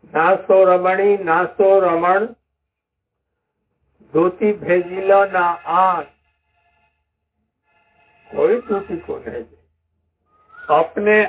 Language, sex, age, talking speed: Hindi, male, 60-79, 80 wpm